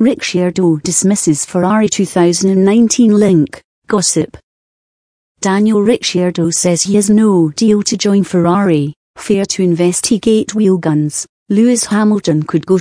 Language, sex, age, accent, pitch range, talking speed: English, female, 40-59, British, 180-215 Hz, 120 wpm